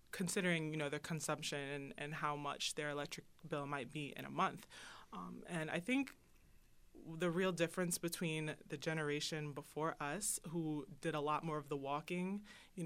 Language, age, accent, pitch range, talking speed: English, 20-39, American, 145-170 Hz, 175 wpm